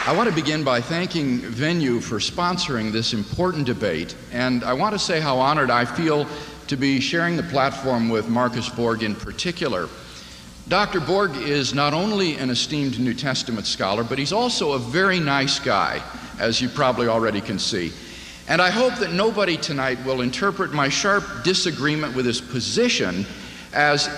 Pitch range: 120-170 Hz